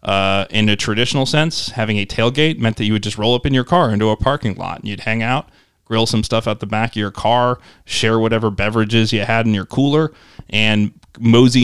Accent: American